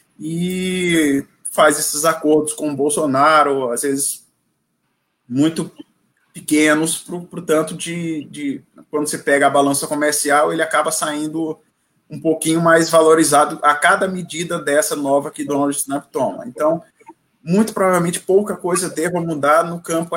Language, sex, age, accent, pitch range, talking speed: Portuguese, male, 20-39, Brazilian, 140-175 Hz, 135 wpm